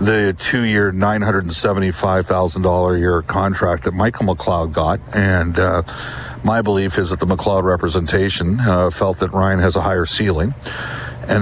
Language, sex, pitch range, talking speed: English, male, 95-110 Hz, 145 wpm